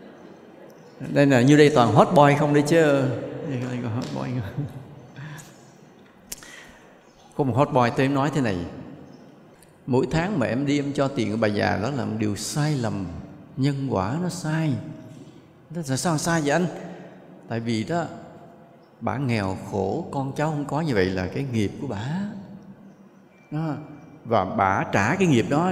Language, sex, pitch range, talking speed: English, male, 120-175 Hz, 165 wpm